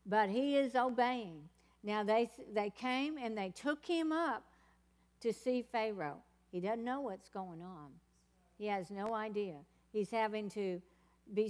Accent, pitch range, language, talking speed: American, 190-245 Hz, English, 155 wpm